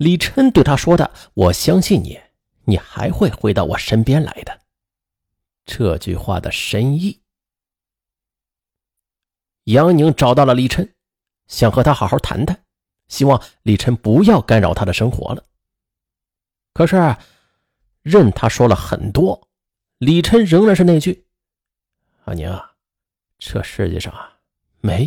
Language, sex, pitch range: Chinese, male, 110-175 Hz